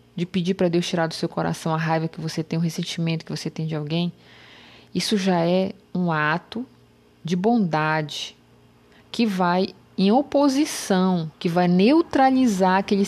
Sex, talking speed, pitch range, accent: female, 160 wpm, 160-195 Hz, Brazilian